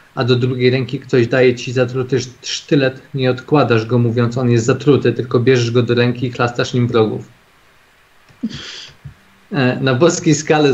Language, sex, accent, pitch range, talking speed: Polish, male, native, 120-140 Hz, 155 wpm